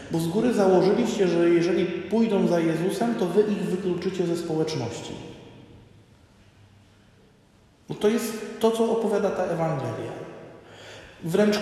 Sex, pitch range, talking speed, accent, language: male, 155-200 Hz, 120 wpm, native, Polish